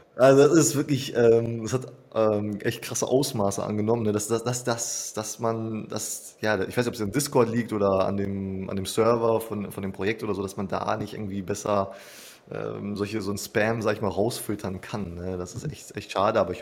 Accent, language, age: German, German, 20-39